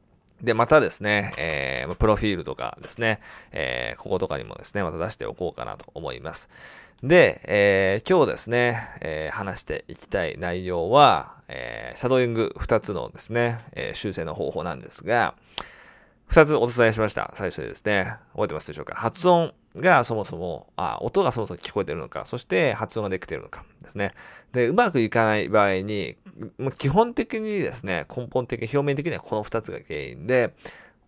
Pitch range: 110-170 Hz